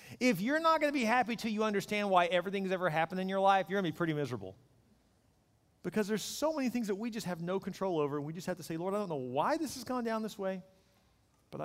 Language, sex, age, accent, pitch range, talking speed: English, male, 40-59, American, 130-180 Hz, 275 wpm